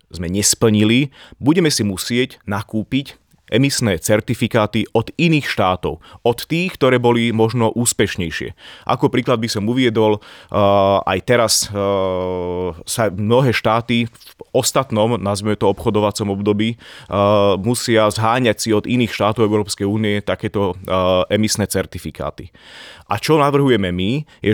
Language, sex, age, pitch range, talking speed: Slovak, male, 30-49, 100-120 Hz, 115 wpm